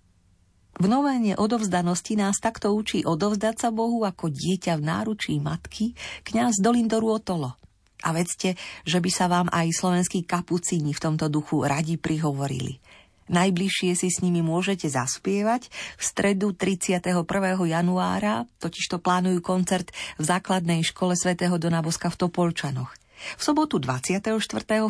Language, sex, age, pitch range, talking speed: Slovak, female, 40-59, 155-205 Hz, 130 wpm